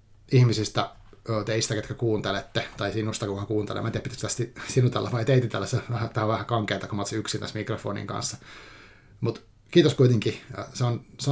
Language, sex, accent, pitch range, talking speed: Finnish, male, native, 105-120 Hz, 160 wpm